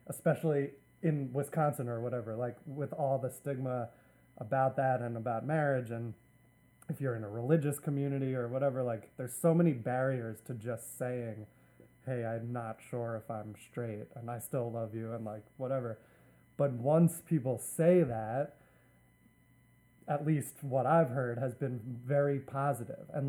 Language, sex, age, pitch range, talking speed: English, male, 20-39, 120-145 Hz, 160 wpm